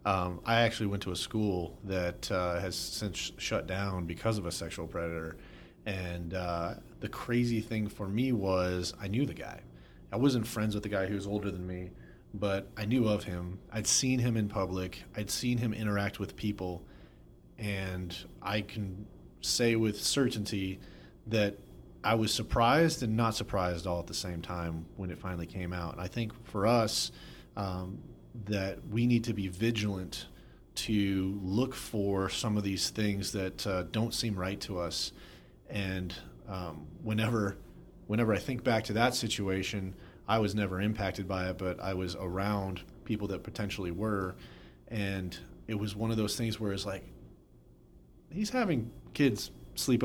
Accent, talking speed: American, 175 wpm